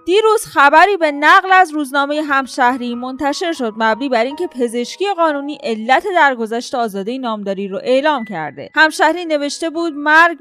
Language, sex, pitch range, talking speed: Persian, female, 210-285 Hz, 145 wpm